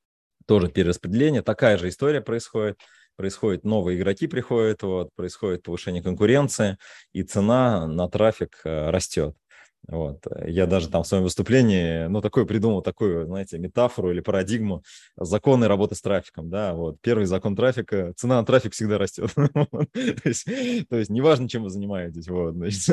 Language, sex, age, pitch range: Russian, male, 20-39, 90-115 Hz